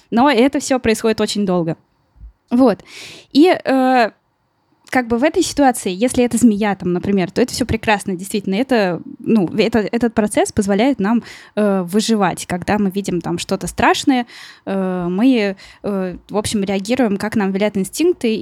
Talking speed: 160 wpm